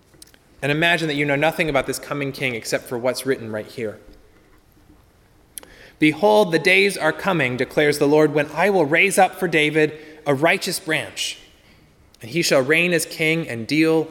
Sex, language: male, English